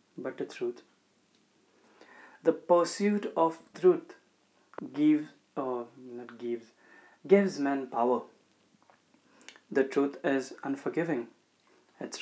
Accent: native